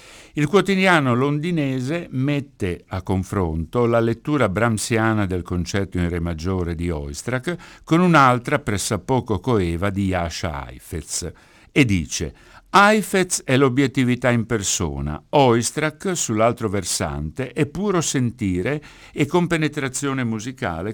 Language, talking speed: Italian, 115 wpm